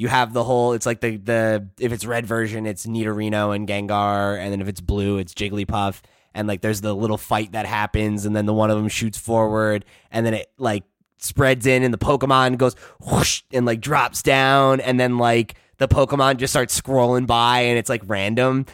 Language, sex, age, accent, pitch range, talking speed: English, male, 20-39, American, 105-130 Hz, 215 wpm